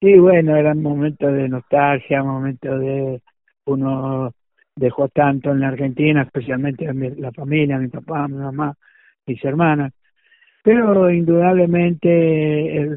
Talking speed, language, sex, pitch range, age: 125 wpm, Spanish, male, 135-155 Hz, 60-79